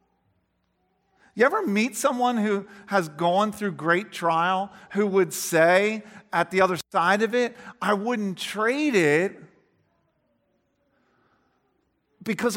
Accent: American